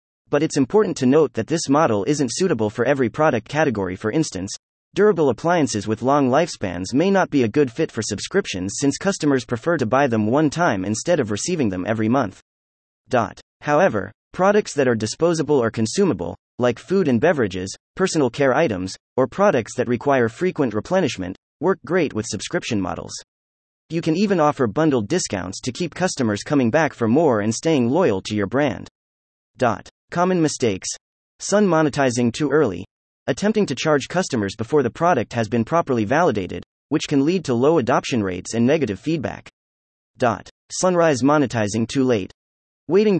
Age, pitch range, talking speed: 30-49, 105-160 Hz, 165 wpm